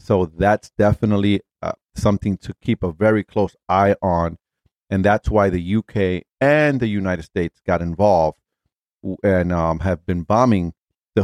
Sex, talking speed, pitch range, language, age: male, 155 wpm, 90-115 Hz, English, 40-59